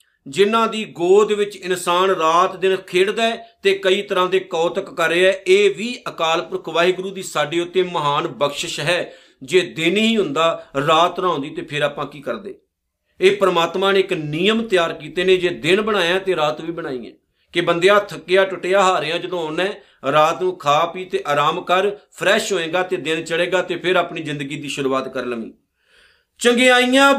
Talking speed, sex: 180 wpm, male